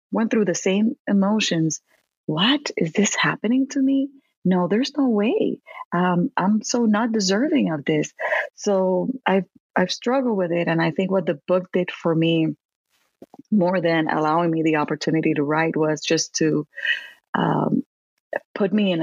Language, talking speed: English, 165 wpm